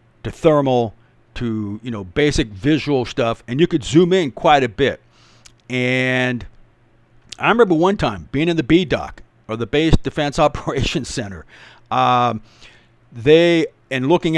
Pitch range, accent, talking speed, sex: 115-150 Hz, American, 145 wpm, male